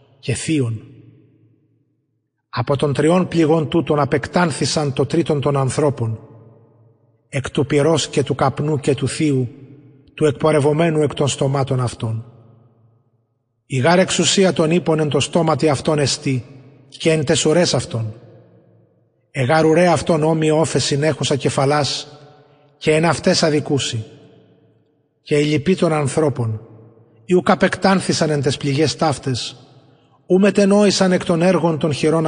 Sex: male